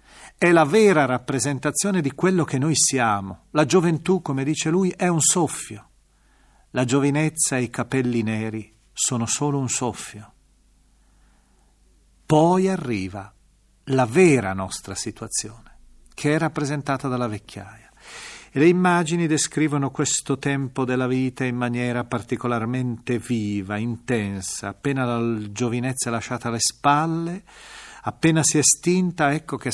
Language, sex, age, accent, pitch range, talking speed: Italian, male, 40-59, native, 115-145 Hz, 125 wpm